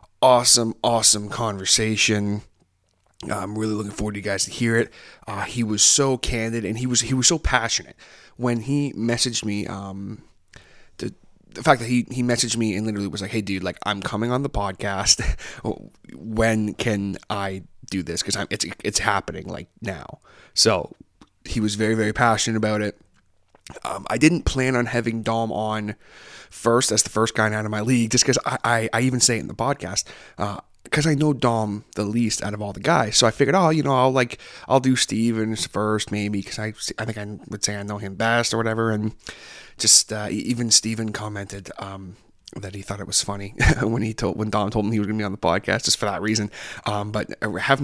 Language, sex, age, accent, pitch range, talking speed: English, male, 20-39, American, 105-120 Hz, 215 wpm